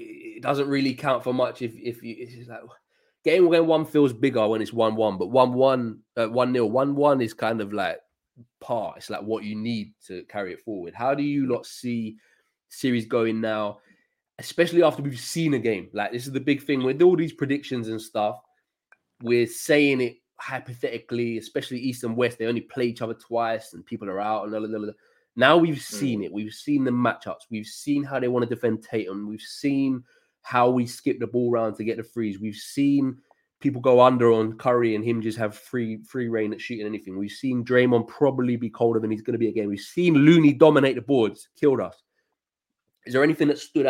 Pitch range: 110-135 Hz